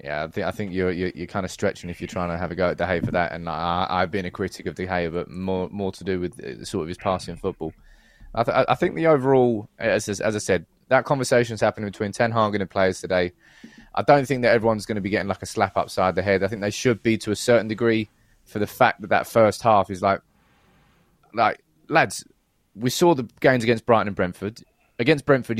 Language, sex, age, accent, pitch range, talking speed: English, male, 20-39, British, 95-130 Hz, 245 wpm